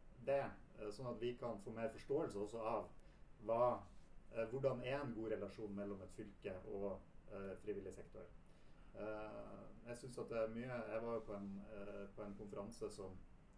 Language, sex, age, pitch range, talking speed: English, male, 30-49, 100-120 Hz, 170 wpm